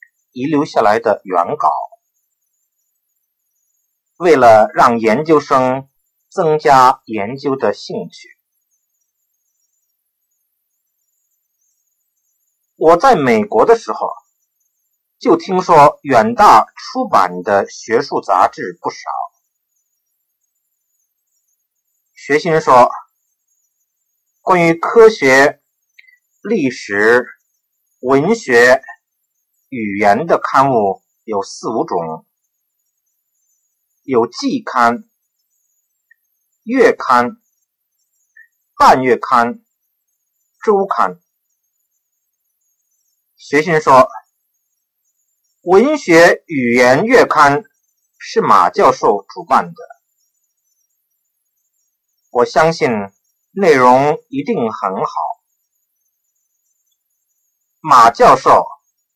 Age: 50-69